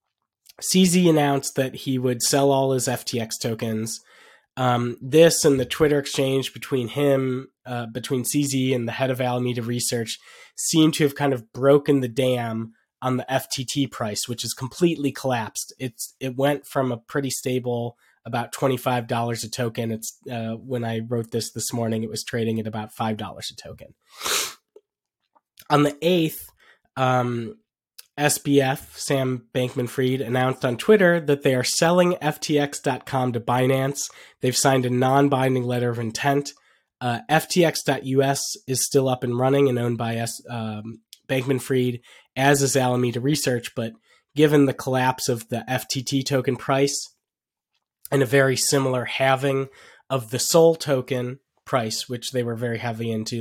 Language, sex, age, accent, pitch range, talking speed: English, male, 20-39, American, 120-140 Hz, 155 wpm